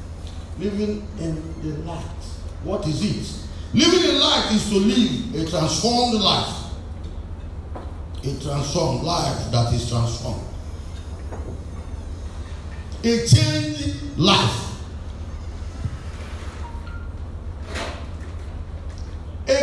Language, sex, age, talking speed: English, male, 50-69, 80 wpm